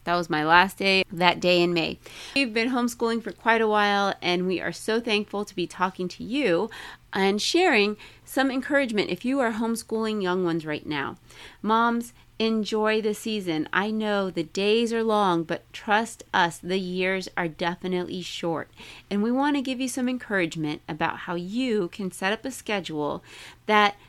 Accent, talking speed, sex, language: American, 180 wpm, female, English